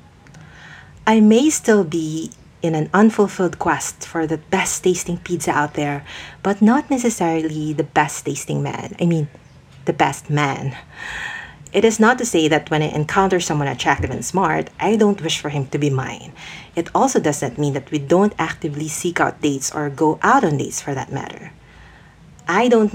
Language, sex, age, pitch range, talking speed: English, female, 40-59, 150-190 Hz, 175 wpm